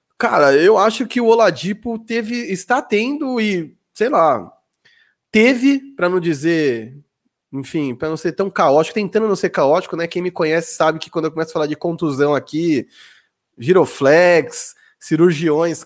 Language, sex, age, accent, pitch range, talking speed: Portuguese, male, 20-39, Brazilian, 160-215 Hz, 160 wpm